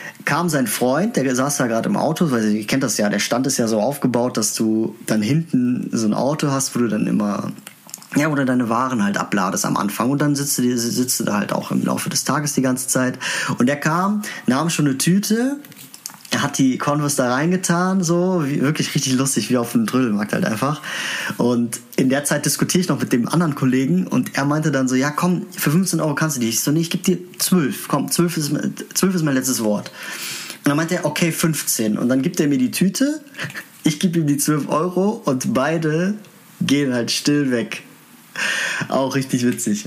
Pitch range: 120-160 Hz